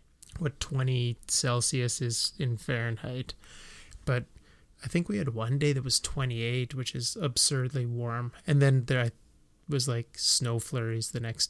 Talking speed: 150 wpm